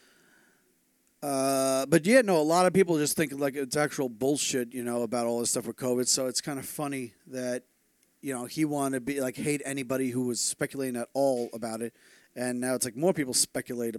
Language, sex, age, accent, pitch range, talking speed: English, male, 40-59, American, 135-165 Hz, 220 wpm